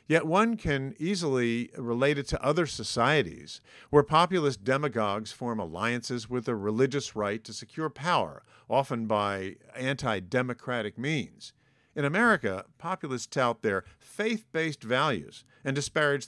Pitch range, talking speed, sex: 110-145 Hz, 125 wpm, male